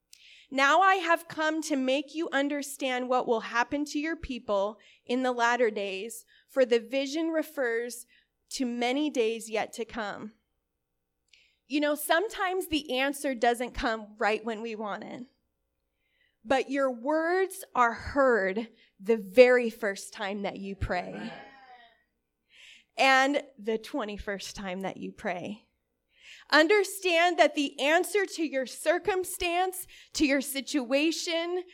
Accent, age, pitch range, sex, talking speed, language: American, 30-49, 235-315 Hz, female, 130 wpm, English